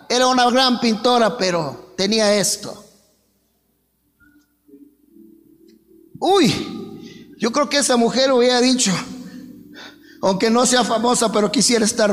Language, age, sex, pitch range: Spanish, 50-69, male, 230-300 Hz